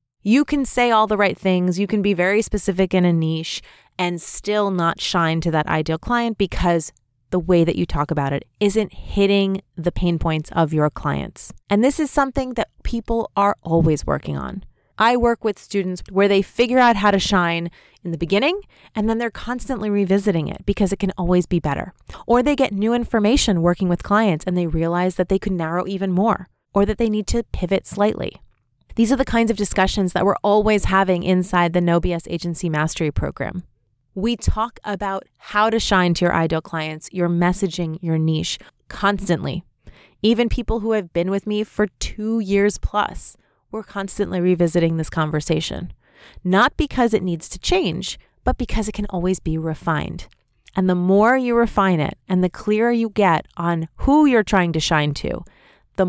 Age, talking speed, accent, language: 30-49, 190 wpm, American, English